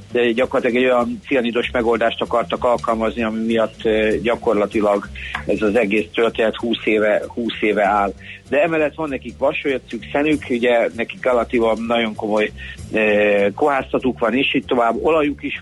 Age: 60-79